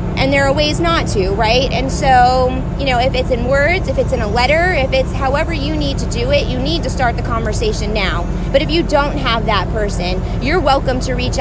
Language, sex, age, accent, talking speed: English, female, 30-49, American, 240 wpm